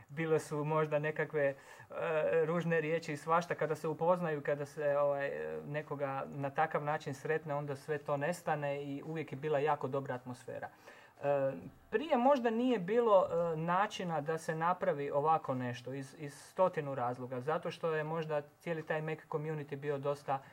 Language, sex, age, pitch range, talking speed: Croatian, male, 30-49, 145-175 Hz, 165 wpm